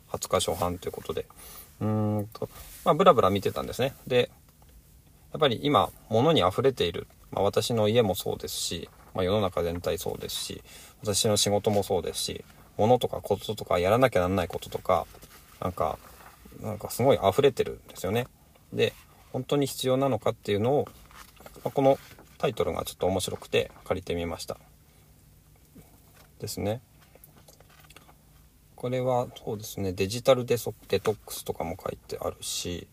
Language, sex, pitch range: Japanese, male, 85-125 Hz